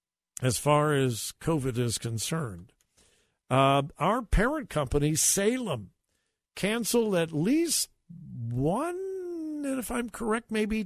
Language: English